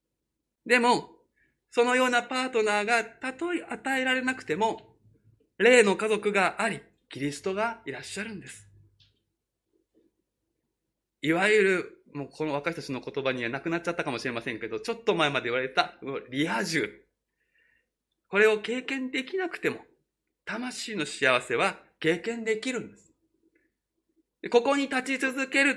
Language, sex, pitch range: Japanese, male, 190-255 Hz